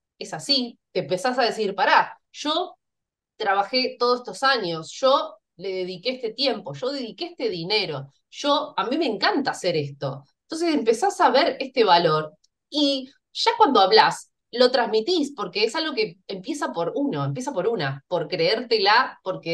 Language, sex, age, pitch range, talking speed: Spanish, female, 20-39, 165-265 Hz, 165 wpm